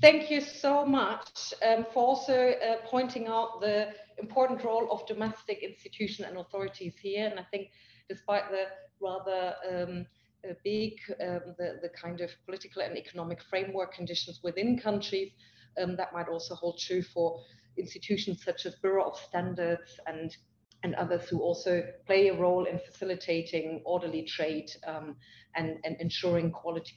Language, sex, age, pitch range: English, female, 30-49, 170-225 Hz